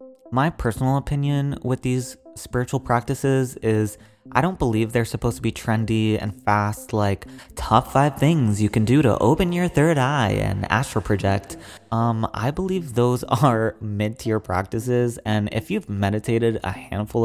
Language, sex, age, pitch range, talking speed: English, male, 20-39, 105-125 Hz, 160 wpm